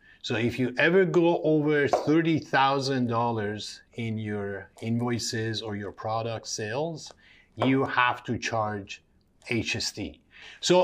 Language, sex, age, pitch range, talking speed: English, male, 50-69, 115-150 Hz, 110 wpm